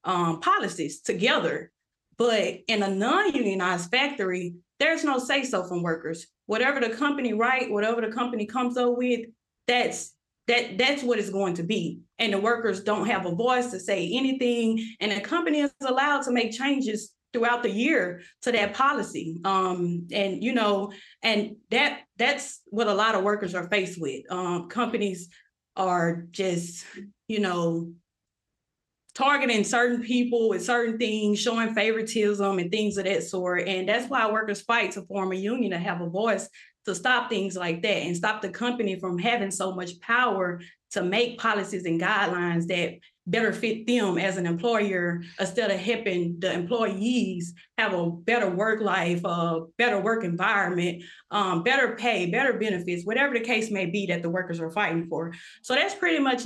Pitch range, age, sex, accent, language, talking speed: 185-235 Hz, 20-39, female, American, English, 170 wpm